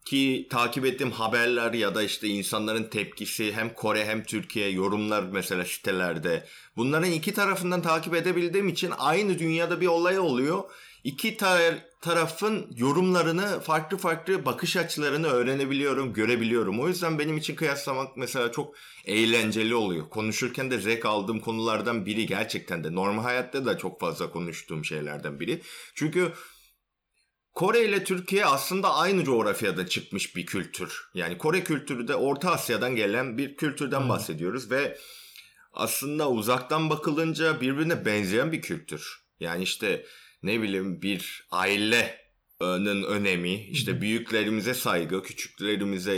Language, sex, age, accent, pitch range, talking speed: Turkish, male, 30-49, native, 100-160 Hz, 130 wpm